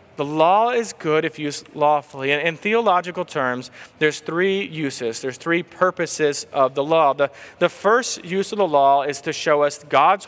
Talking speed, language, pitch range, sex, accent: 185 wpm, English, 140-180 Hz, male, American